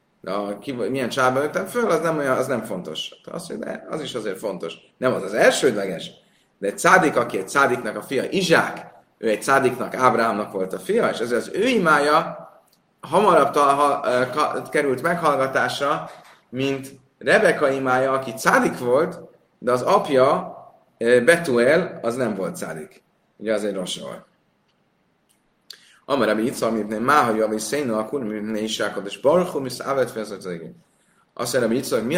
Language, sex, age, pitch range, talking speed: Hungarian, male, 30-49, 110-140 Hz, 145 wpm